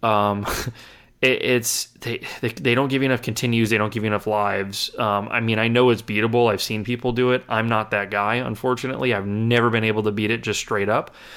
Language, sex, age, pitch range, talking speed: English, male, 20-39, 110-125 Hz, 225 wpm